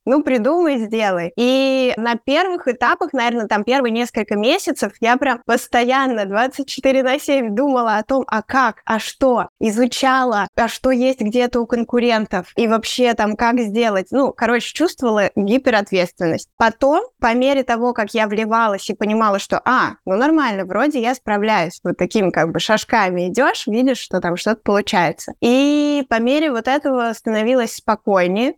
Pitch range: 205-255 Hz